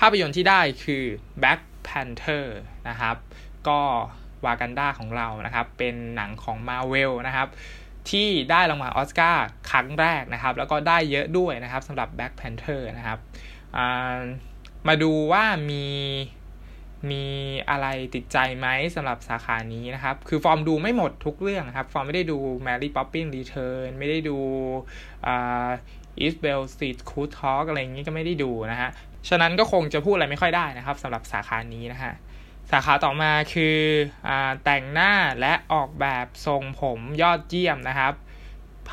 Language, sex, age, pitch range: Thai, male, 20-39, 125-155 Hz